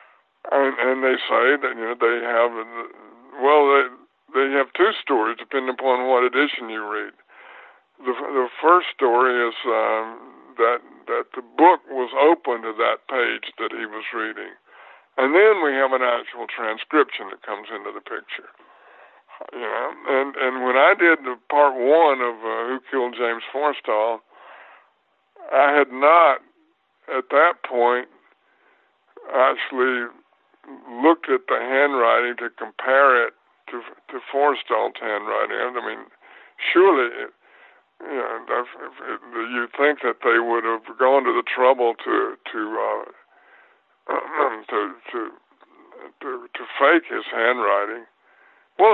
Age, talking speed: 60-79, 140 wpm